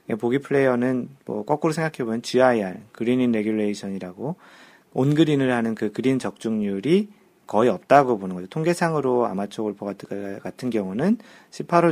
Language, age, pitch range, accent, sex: Korean, 40-59, 105-140 Hz, native, male